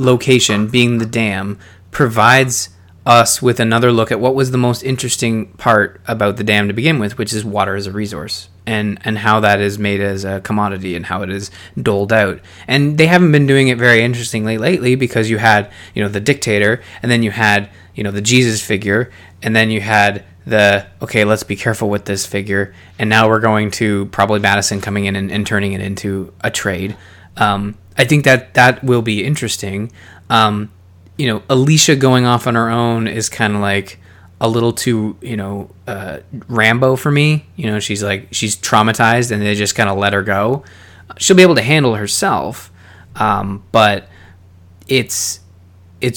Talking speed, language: 195 wpm, English